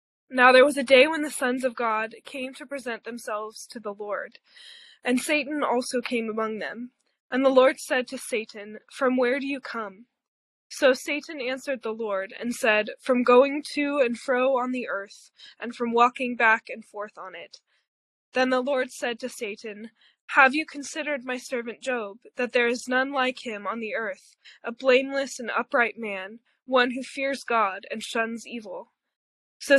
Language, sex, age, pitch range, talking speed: English, female, 20-39, 225-270 Hz, 185 wpm